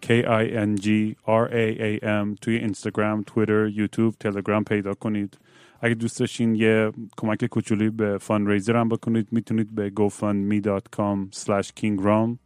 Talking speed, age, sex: 100 wpm, 30-49, male